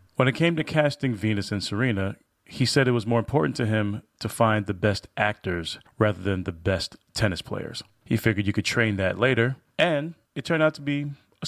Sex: male